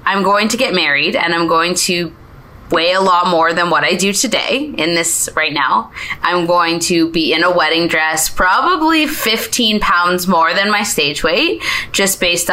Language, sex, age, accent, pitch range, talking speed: English, female, 20-39, American, 170-205 Hz, 190 wpm